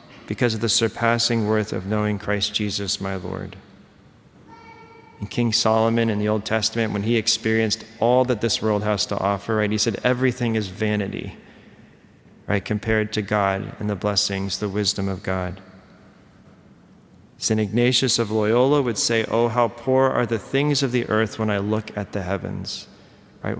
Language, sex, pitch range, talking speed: English, male, 105-120 Hz, 170 wpm